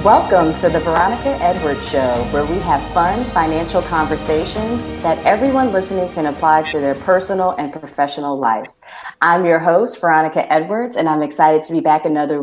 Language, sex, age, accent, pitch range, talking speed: English, female, 30-49, American, 145-175 Hz, 170 wpm